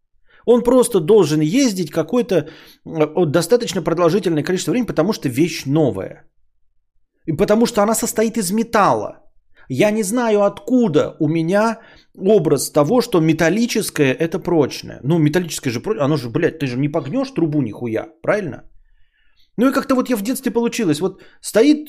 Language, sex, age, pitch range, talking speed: Bulgarian, male, 30-49, 145-230 Hz, 150 wpm